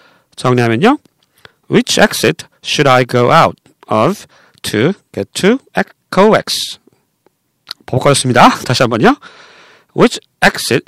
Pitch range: 140-220 Hz